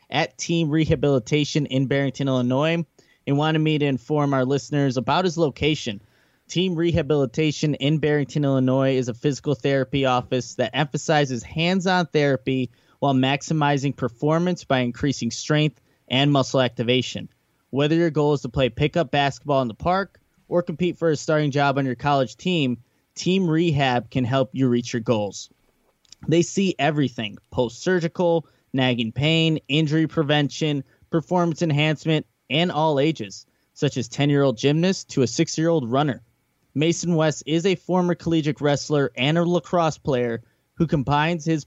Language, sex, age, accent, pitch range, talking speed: English, male, 20-39, American, 130-160 Hz, 150 wpm